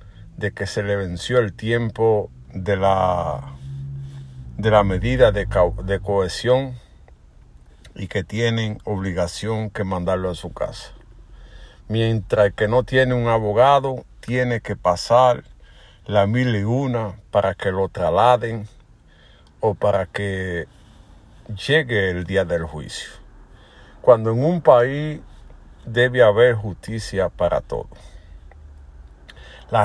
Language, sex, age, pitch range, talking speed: Spanish, male, 50-69, 95-125 Hz, 115 wpm